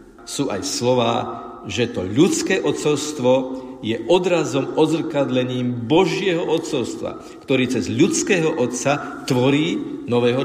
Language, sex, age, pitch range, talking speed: Slovak, male, 50-69, 115-155 Hz, 105 wpm